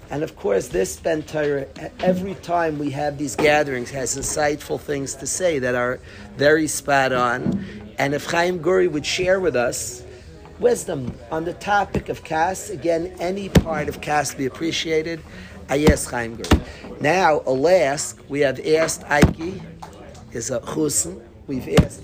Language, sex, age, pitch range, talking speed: English, male, 40-59, 140-175 Hz, 155 wpm